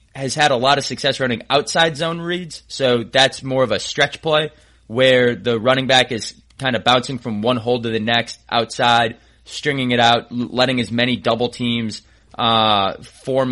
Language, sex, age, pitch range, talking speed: English, male, 20-39, 110-135 Hz, 185 wpm